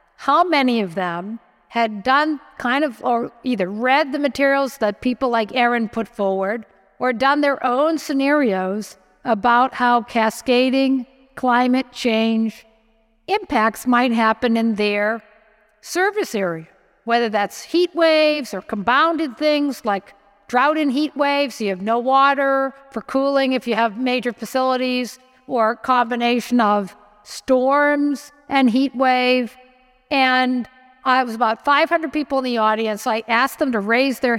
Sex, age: female, 50-69